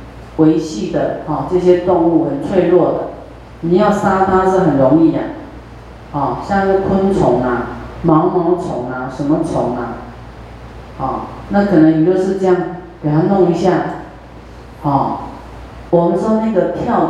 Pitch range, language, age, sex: 155-195 Hz, Chinese, 40-59, female